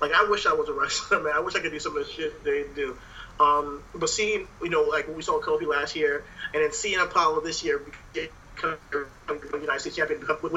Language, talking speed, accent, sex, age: English, 240 wpm, American, male, 30-49